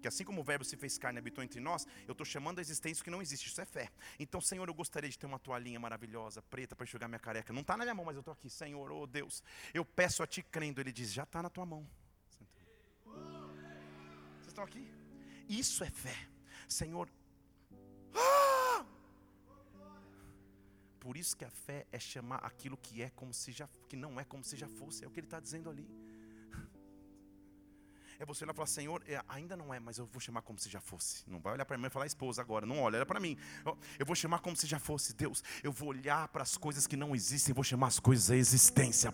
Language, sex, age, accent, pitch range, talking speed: Portuguese, male, 40-59, Brazilian, 120-185 Hz, 230 wpm